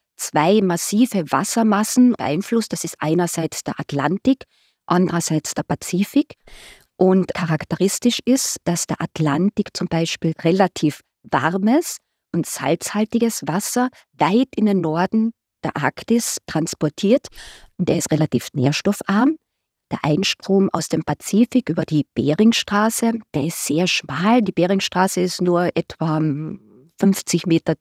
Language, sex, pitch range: German, female, 165-230 Hz